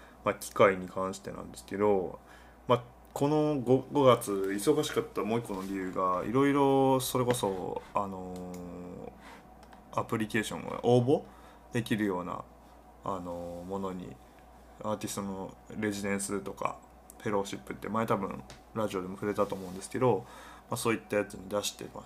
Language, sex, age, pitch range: Japanese, male, 20-39, 95-120 Hz